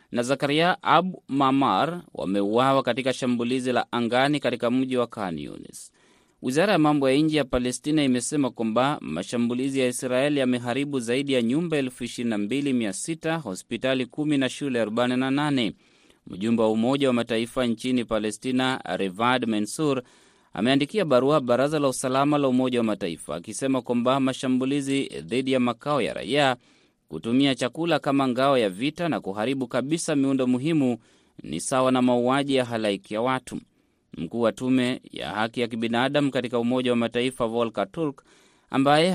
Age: 30-49